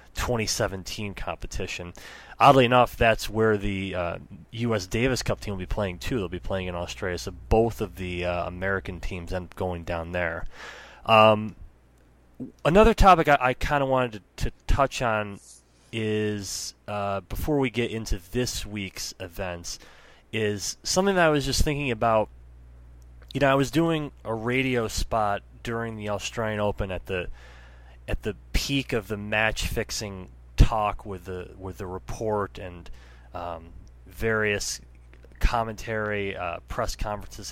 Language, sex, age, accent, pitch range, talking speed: English, male, 30-49, American, 90-120 Hz, 155 wpm